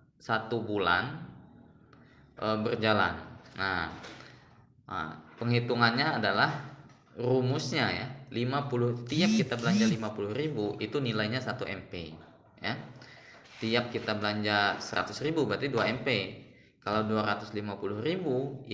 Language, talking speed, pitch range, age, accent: Indonesian, 90 wpm, 105-140 Hz, 20-39, native